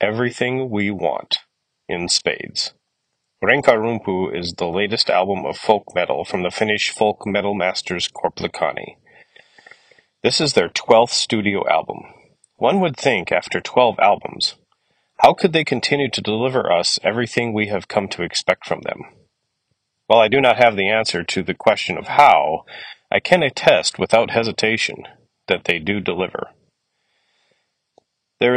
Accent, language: American, English